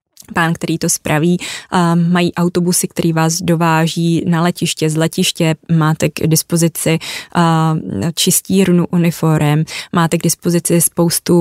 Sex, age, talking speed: female, 20-39, 125 wpm